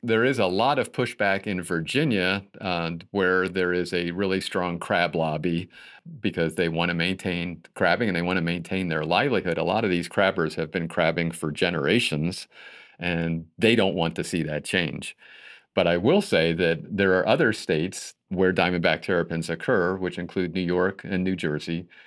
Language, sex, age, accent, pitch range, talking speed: English, male, 50-69, American, 85-95 Hz, 185 wpm